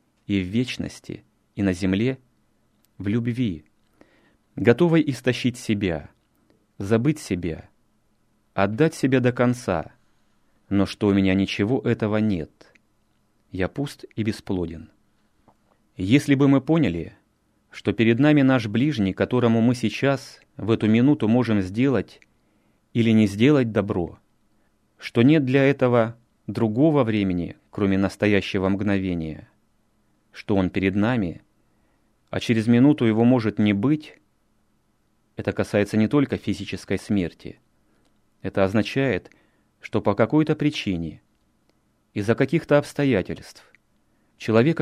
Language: Russian